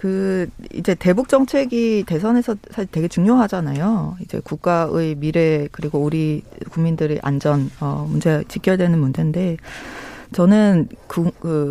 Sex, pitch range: female, 155-210 Hz